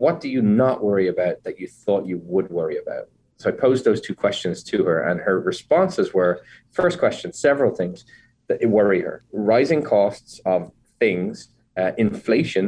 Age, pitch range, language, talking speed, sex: 30-49, 90-110 Hz, English, 180 wpm, male